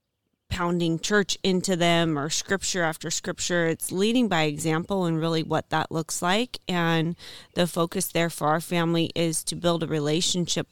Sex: female